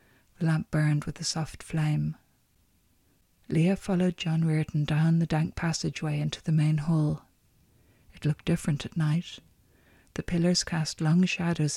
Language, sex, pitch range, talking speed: English, female, 150-170 Hz, 150 wpm